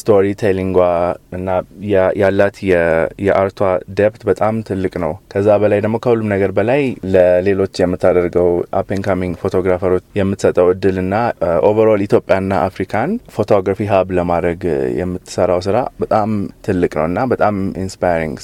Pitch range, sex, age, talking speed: 90-105 Hz, male, 20-39, 130 wpm